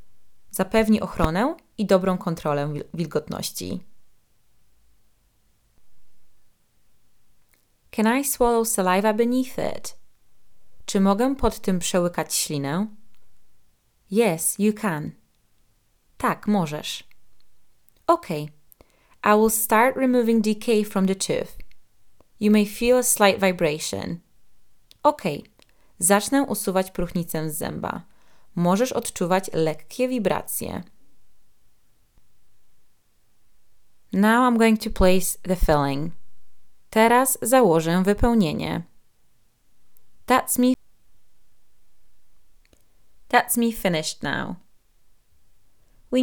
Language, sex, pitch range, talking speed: Polish, female, 155-230 Hz, 85 wpm